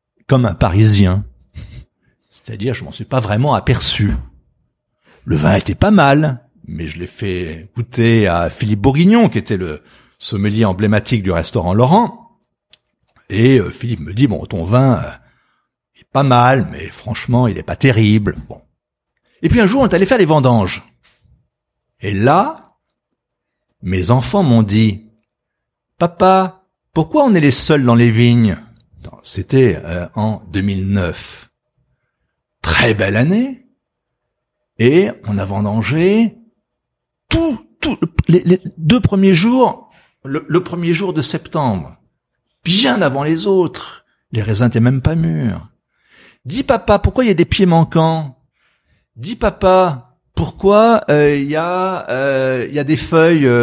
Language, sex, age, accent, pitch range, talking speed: French, male, 60-79, French, 105-165 Hz, 140 wpm